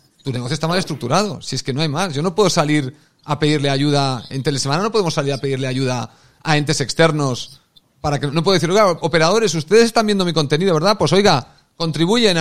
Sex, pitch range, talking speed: male, 135-185 Hz, 215 wpm